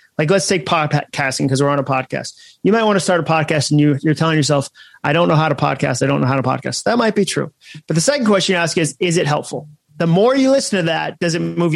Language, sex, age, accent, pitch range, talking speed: English, male, 30-49, American, 140-180 Hz, 285 wpm